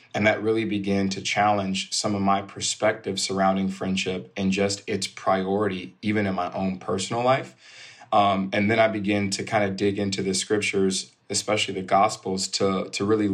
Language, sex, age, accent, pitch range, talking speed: English, male, 20-39, American, 95-110 Hz, 180 wpm